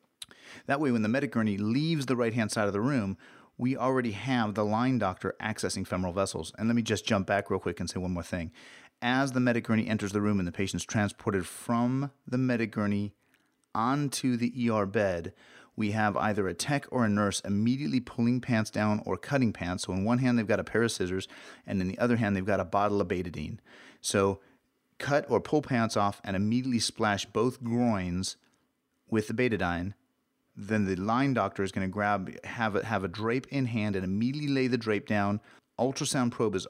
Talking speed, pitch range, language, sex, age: 210 wpm, 95-120 Hz, English, male, 30-49